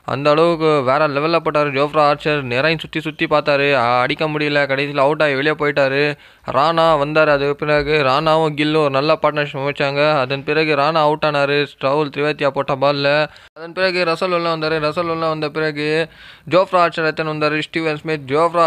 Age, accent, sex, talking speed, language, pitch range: 20-39, native, male, 170 wpm, Tamil, 145-165 Hz